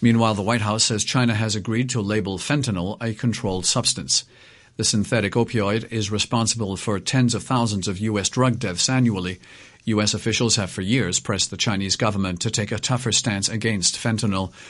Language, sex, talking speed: English, male, 180 wpm